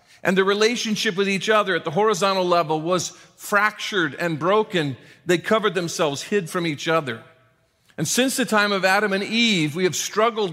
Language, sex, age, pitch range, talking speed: English, male, 40-59, 155-200 Hz, 180 wpm